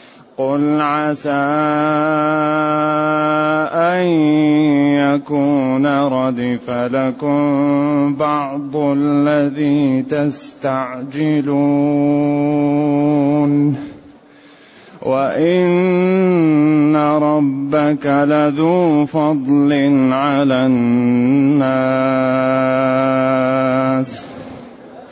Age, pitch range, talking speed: 30-49, 130-150 Hz, 35 wpm